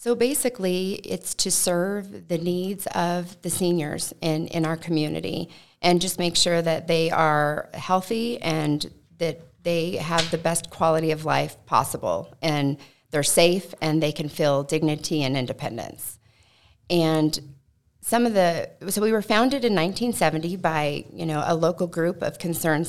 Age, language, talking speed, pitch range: 40-59, English, 155 wpm, 150-175 Hz